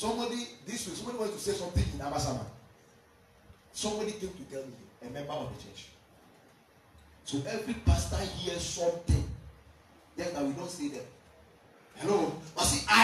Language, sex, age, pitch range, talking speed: English, male, 30-49, 125-180 Hz, 160 wpm